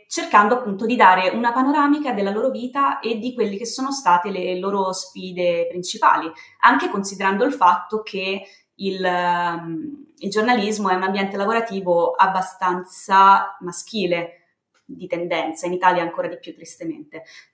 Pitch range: 180-245 Hz